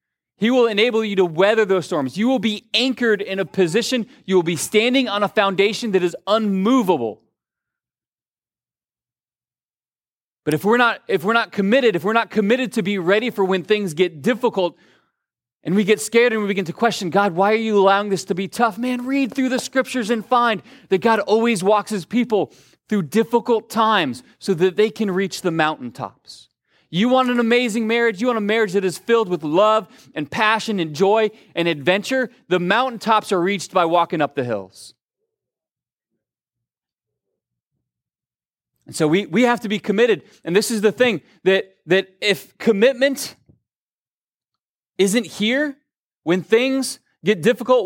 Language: English